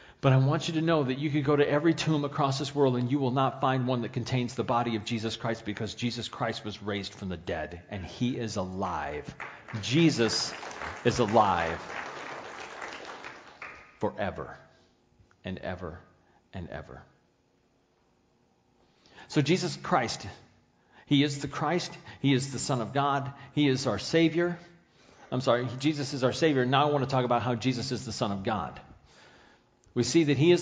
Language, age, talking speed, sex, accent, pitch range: English, 40-59, 175 wpm, male, American, 115-145 Hz